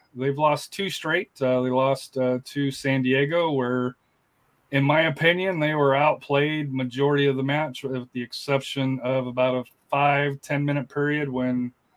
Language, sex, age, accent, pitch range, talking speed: English, male, 30-49, American, 125-140 Hz, 160 wpm